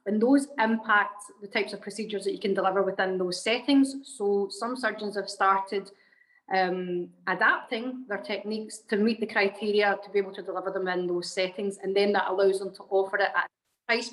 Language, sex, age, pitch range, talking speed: English, female, 30-49, 195-225 Hz, 200 wpm